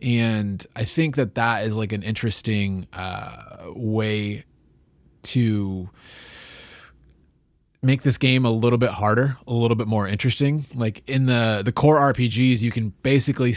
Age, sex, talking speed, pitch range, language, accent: 20-39, male, 145 wpm, 95-120 Hz, English, American